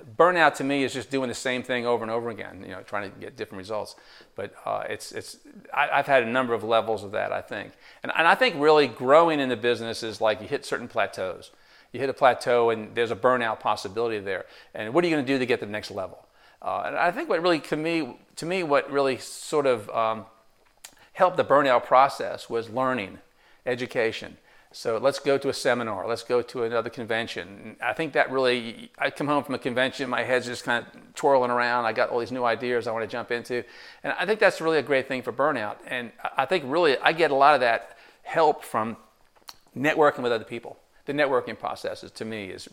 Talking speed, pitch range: 230 wpm, 115-140 Hz